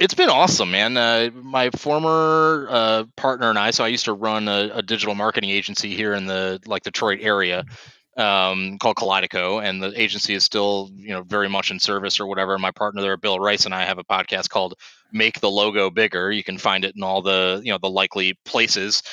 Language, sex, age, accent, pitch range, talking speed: English, male, 30-49, American, 95-115 Hz, 225 wpm